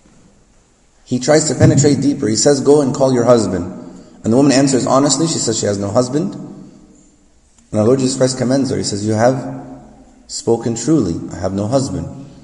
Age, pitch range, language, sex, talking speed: 30-49, 110-140 Hz, English, male, 195 wpm